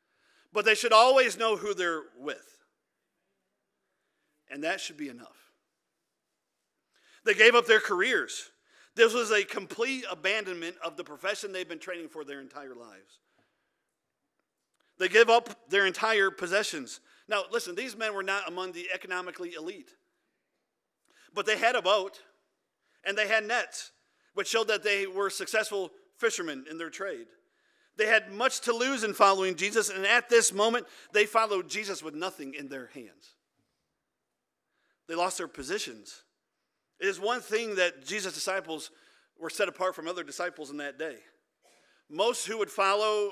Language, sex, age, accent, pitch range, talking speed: English, male, 50-69, American, 180-235 Hz, 155 wpm